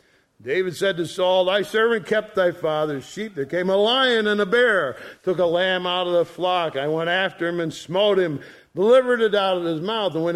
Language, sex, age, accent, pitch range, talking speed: English, male, 50-69, American, 145-195 Hz, 225 wpm